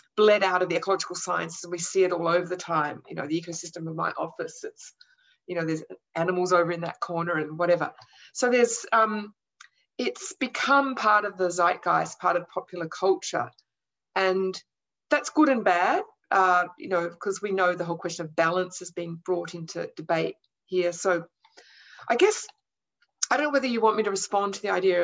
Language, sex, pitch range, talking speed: English, female, 175-235 Hz, 195 wpm